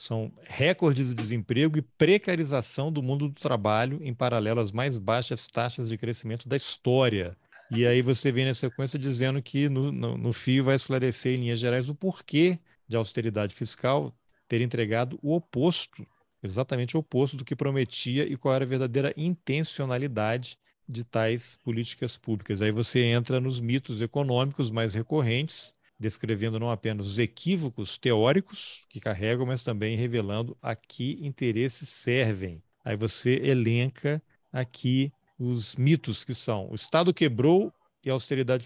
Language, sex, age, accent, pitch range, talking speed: Portuguese, male, 40-59, Brazilian, 115-140 Hz, 155 wpm